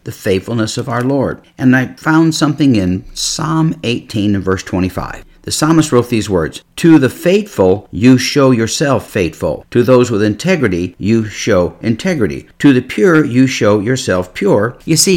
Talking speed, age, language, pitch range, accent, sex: 170 wpm, 50-69, English, 100-135 Hz, American, male